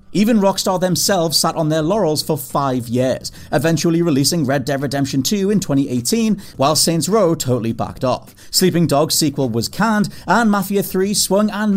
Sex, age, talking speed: male, 30-49, 175 wpm